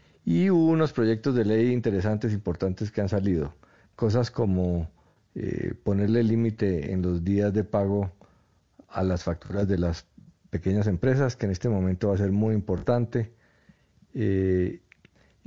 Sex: male